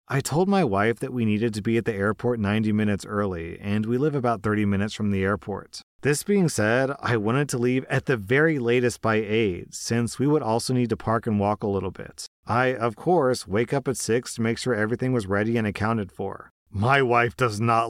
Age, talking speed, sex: 40-59, 230 wpm, male